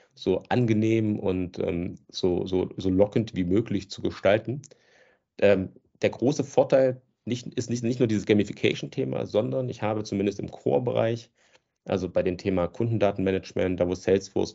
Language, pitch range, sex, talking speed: German, 95-115 Hz, male, 145 wpm